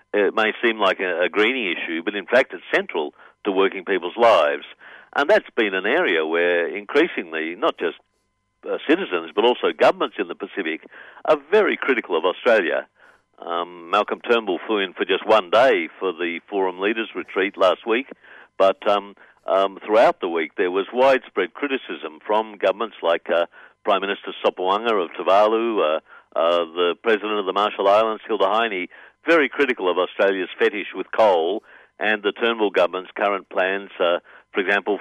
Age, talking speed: 60-79, 170 wpm